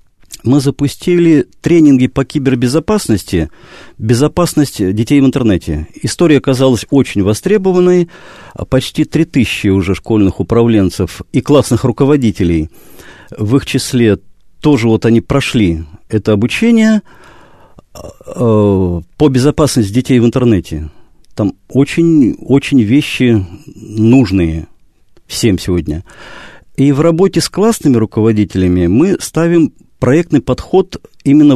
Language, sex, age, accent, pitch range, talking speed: Russian, male, 50-69, native, 105-150 Hz, 105 wpm